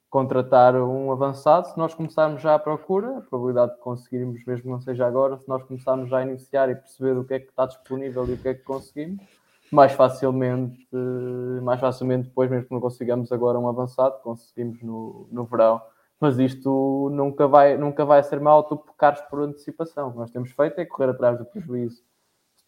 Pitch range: 125-140 Hz